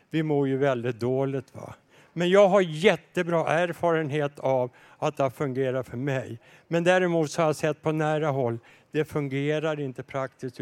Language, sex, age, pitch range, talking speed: Swedish, male, 60-79, 140-180 Hz, 170 wpm